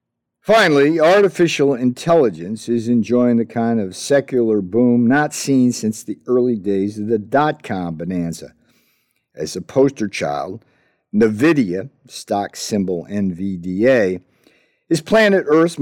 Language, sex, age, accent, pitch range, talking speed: English, male, 50-69, American, 110-145 Hz, 120 wpm